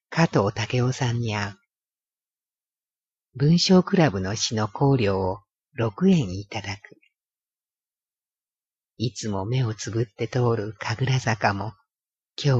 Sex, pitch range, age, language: female, 105-135 Hz, 50-69, Japanese